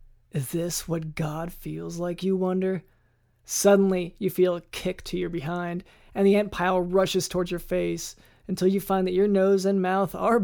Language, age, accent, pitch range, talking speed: English, 20-39, American, 175-195 Hz, 190 wpm